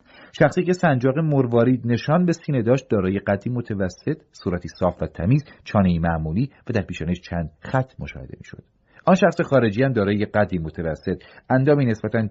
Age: 40-59